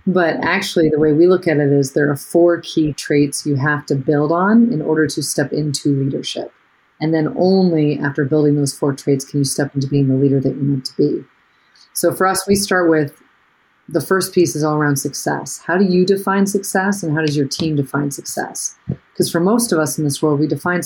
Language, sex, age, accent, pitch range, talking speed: English, female, 30-49, American, 145-170 Hz, 230 wpm